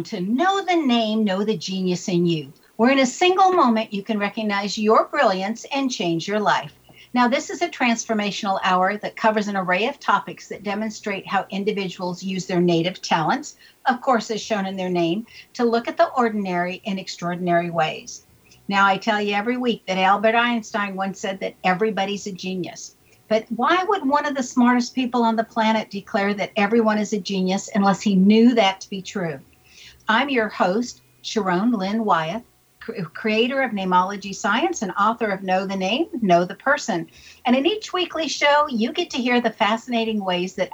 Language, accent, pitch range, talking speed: English, American, 190-245 Hz, 190 wpm